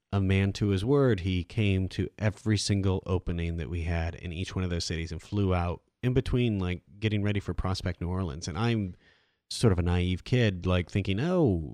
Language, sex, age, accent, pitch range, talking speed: English, male, 30-49, American, 85-100 Hz, 215 wpm